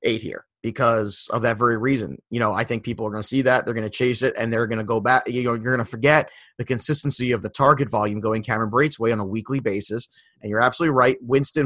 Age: 30-49